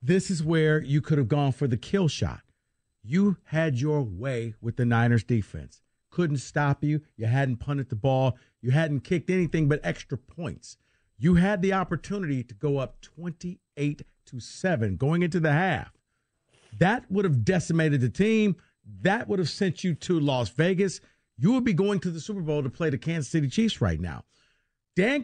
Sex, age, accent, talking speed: male, 50-69, American, 185 wpm